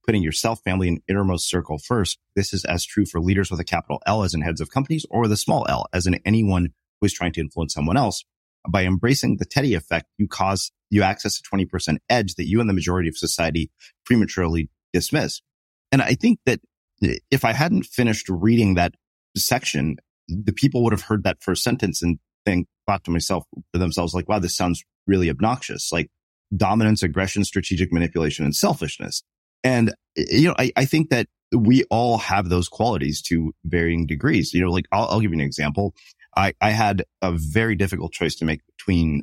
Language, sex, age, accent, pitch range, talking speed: English, male, 30-49, American, 80-105 Hz, 200 wpm